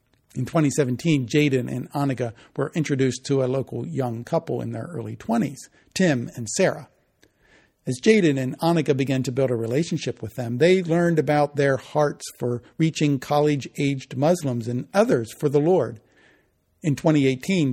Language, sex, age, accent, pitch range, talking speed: English, male, 50-69, American, 125-160 Hz, 155 wpm